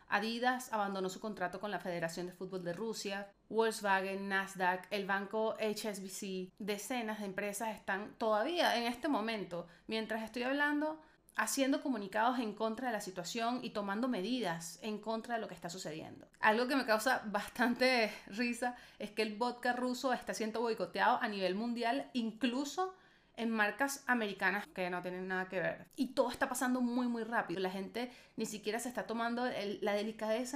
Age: 30-49